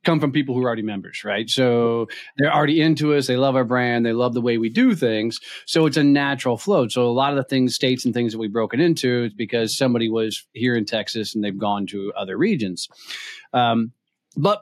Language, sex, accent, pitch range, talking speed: English, male, American, 115-140 Hz, 235 wpm